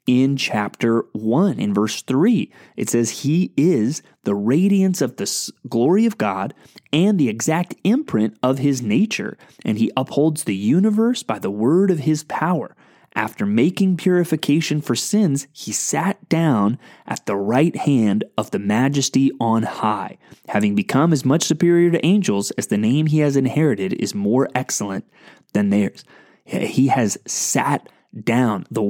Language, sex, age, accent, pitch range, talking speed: English, male, 30-49, American, 120-170 Hz, 155 wpm